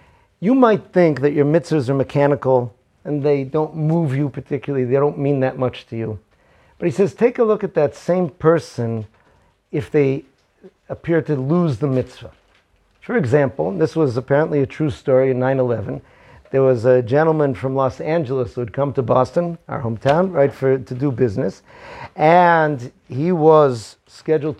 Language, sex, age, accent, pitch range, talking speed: English, male, 50-69, American, 130-160 Hz, 175 wpm